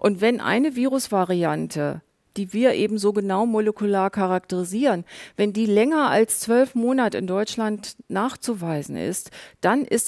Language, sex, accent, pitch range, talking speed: German, female, German, 185-220 Hz, 135 wpm